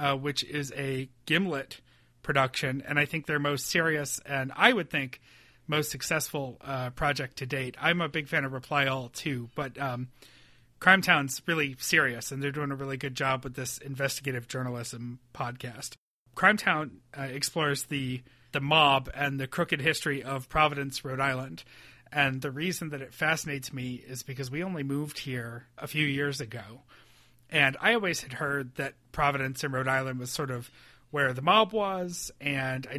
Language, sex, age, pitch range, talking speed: English, male, 30-49, 130-150 Hz, 180 wpm